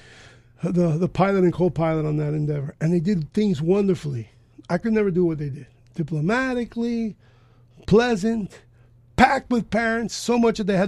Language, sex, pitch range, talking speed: English, male, 120-185 Hz, 170 wpm